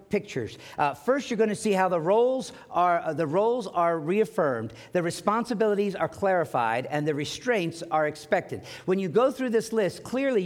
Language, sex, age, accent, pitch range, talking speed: English, male, 50-69, American, 160-215 Hz, 185 wpm